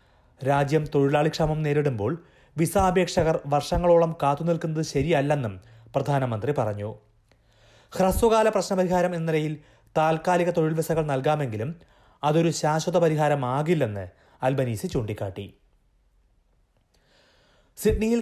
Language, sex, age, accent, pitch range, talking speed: Malayalam, male, 30-49, native, 120-165 Hz, 75 wpm